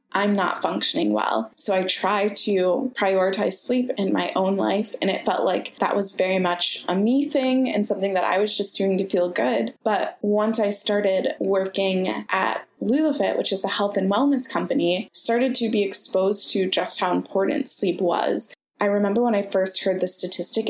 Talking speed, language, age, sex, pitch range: 195 wpm, English, 20-39, female, 190-235 Hz